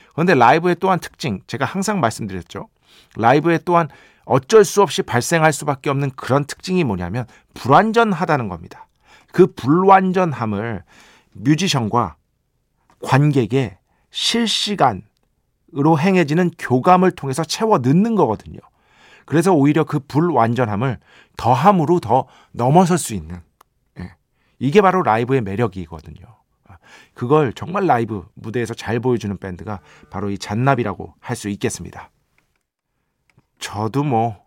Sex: male